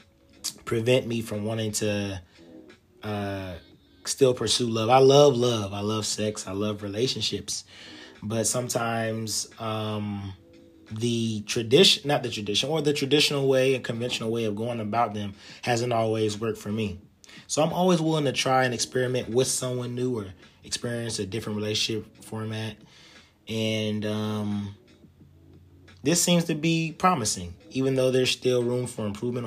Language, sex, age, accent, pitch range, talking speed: English, male, 20-39, American, 100-125 Hz, 150 wpm